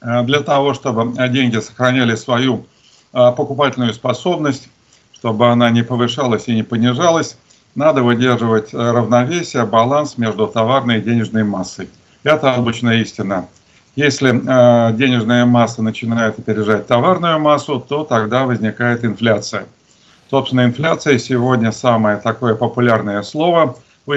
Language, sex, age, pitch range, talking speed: Russian, male, 50-69, 115-130 Hz, 115 wpm